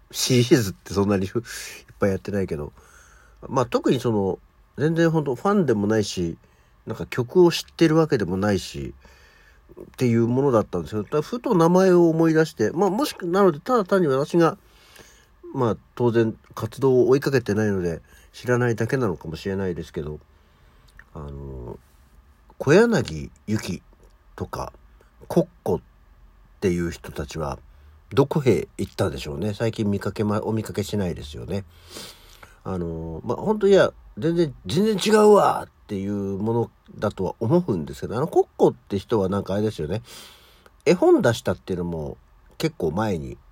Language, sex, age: Japanese, male, 50-69